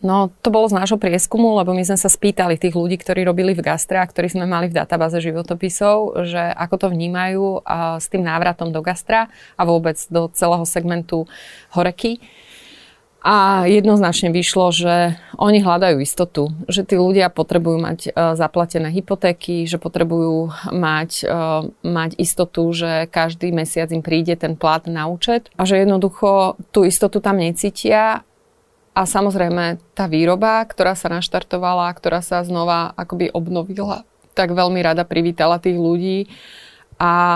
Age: 30-49